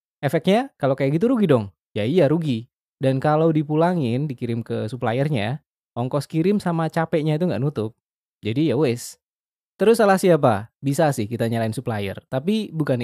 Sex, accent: male, native